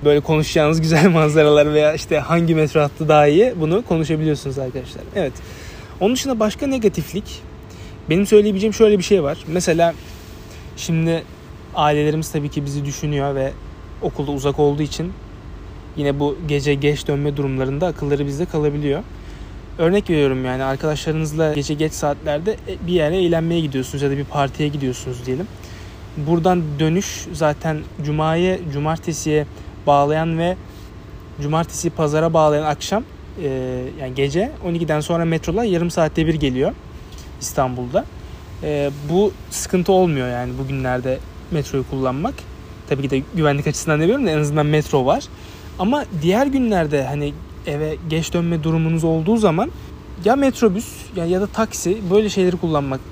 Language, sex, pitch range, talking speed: Turkish, male, 140-170 Hz, 140 wpm